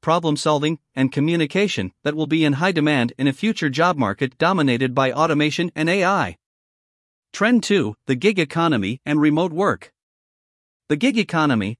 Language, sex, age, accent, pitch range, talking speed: English, male, 50-69, American, 130-170 Hz, 155 wpm